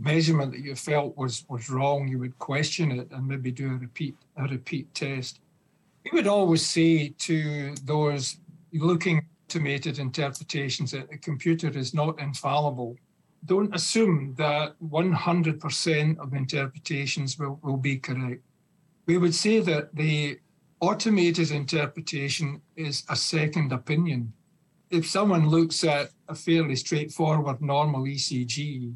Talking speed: 135 wpm